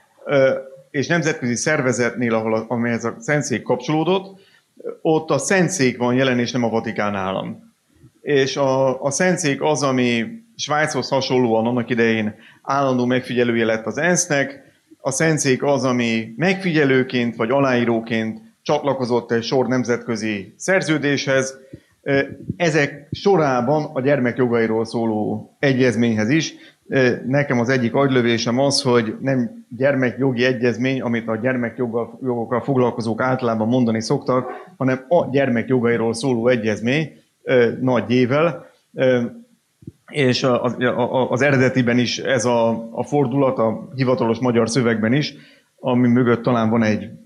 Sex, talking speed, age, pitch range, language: male, 115 wpm, 30-49, 115-140 Hz, Hungarian